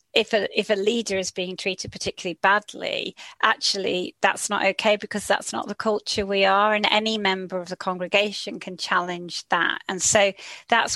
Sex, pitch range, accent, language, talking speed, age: female, 185-210 Hz, British, English, 175 wpm, 40-59